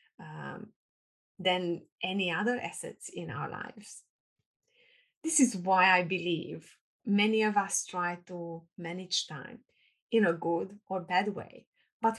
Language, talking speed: English, 135 wpm